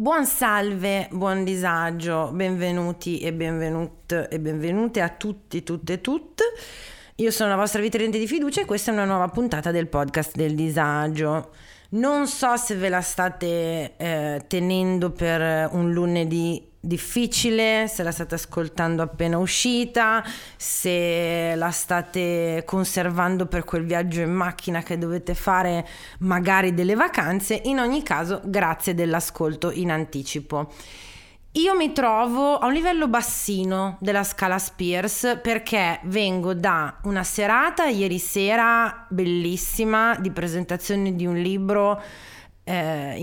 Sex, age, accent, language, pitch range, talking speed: female, 30-49, native, Italian, 170-210 Hz, 130 wpm